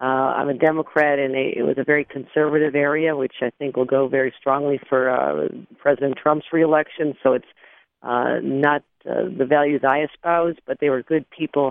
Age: 40-59